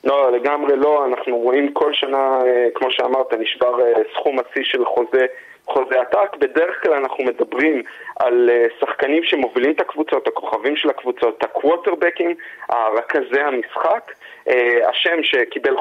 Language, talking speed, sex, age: Hebrew, 125 wpm, male, 30-49